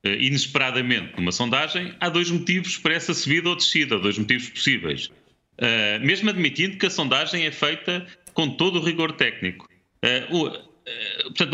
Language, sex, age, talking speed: Portuguese, male, 30-49, 160 wpm